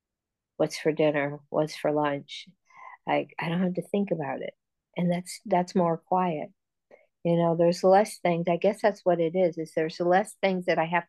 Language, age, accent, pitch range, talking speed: English, 50-69, American, 160-205 Hz, 200 wpm